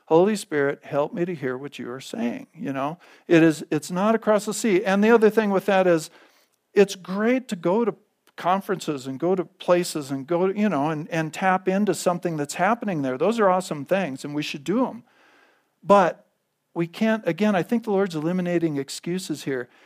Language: English